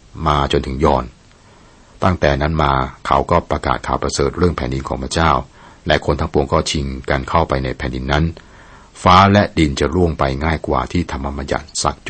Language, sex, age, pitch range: Thai, male, 60-79, 65-80 Hz